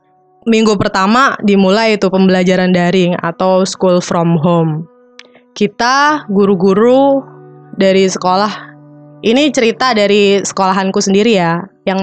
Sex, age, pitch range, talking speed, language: female, 20-39, 185-220 Hz, 105 wpm, Indonesian